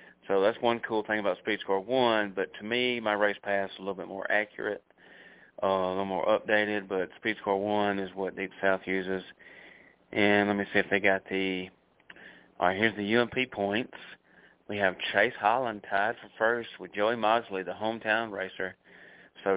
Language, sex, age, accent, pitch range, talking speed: English, male, 30-49, American, 95-110 Hz, 195 wpm